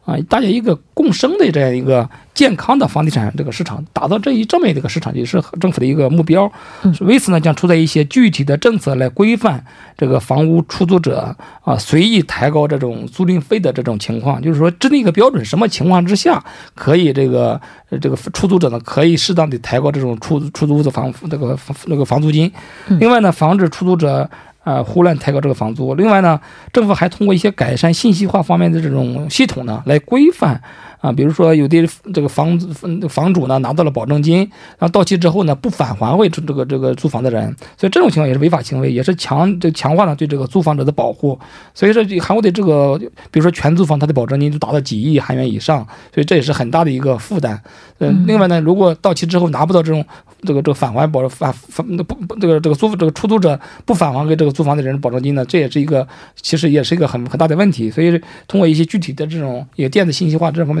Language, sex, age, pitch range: Korean, male, 50-69, 140-180 Hz